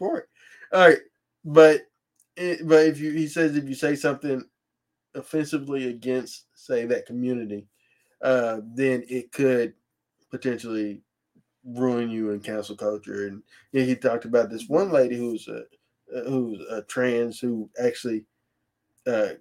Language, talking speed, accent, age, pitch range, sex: English, 135 wpm, American, 20-39, 110-140 Hz, male